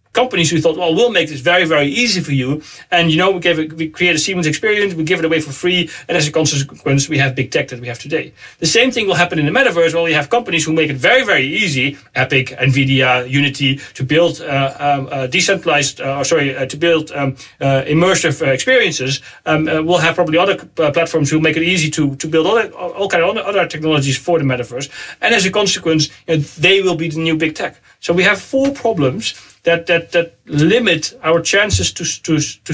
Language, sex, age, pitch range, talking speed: English, male, 40-59, 145-180 Hz, 235 wpm